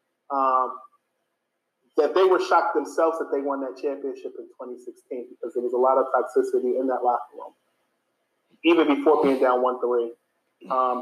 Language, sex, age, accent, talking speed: English, male, 30-49, American, 165 wpm